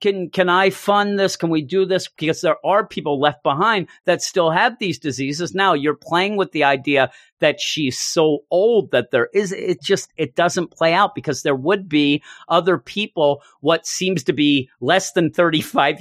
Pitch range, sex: 150-205 Hz, male